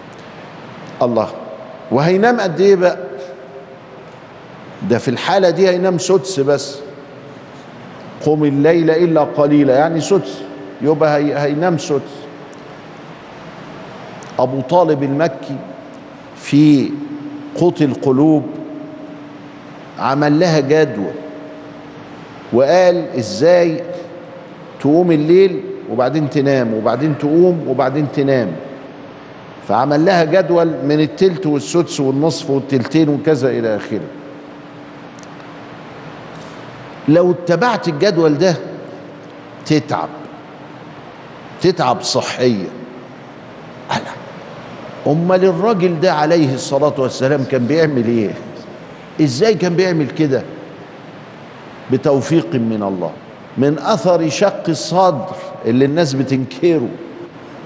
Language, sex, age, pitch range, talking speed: Arabic, male, 50-69, 140-180 Hz, 85 wpm